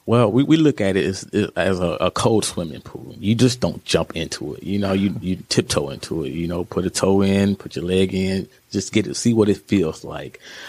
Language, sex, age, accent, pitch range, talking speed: English, male, 30-49, American, 90-105 Hz, 245 wpm